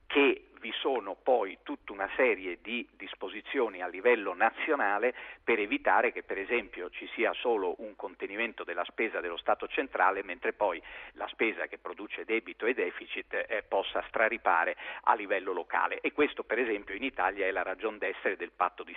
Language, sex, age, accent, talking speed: Italian, male, 50-69, native, 175 wpm